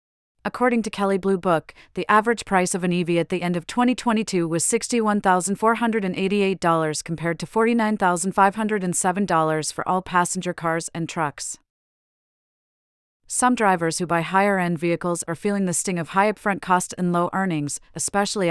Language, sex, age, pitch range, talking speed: English, female, 30-49, 165-205 Hz, 145 wpm